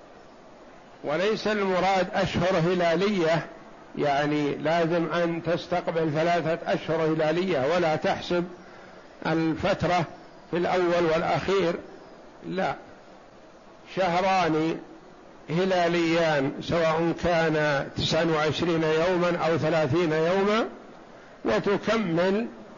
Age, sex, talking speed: 60-79, male, 75 wpm